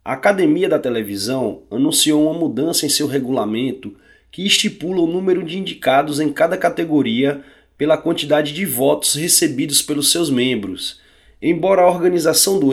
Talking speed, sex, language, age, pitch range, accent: 145 wpm, male, Portuguese, 20-39, 140-175 Hz, Brazilian